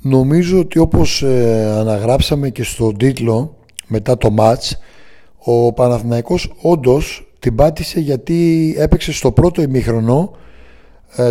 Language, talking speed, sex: Greek, 115 wpm, male